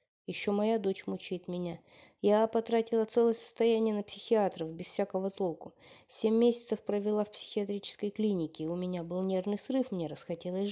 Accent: native